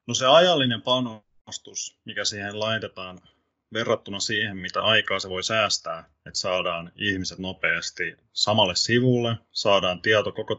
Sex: male